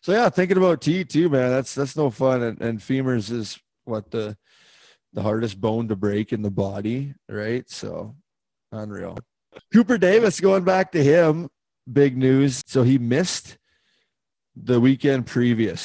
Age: 20-39